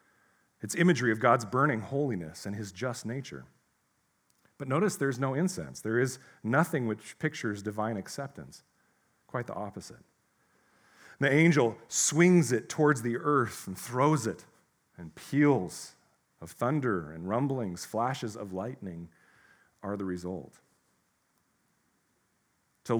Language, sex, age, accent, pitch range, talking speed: English, male, 40-59, American, 110-150 Hz, 125 wpm